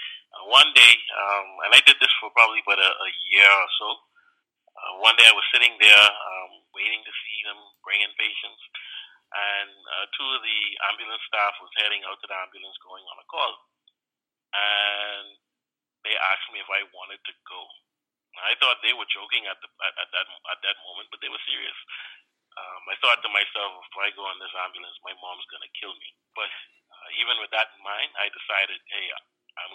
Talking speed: 205 wpm